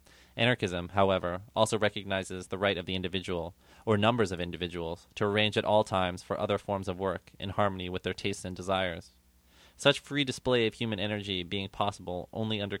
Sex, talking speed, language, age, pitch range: male, 185 wpm, English, 20-39, 90-105 Hz